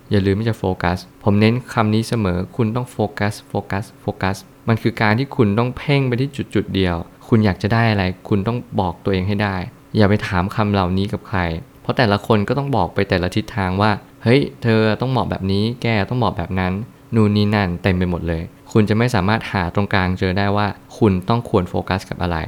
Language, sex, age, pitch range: Thai, male, 20-39, 95-115 Hz